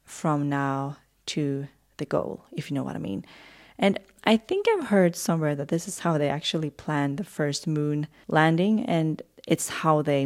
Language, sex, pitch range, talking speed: English, female, 150-180 Hz, 185 wpm